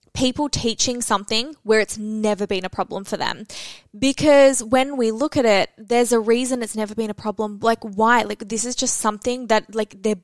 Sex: female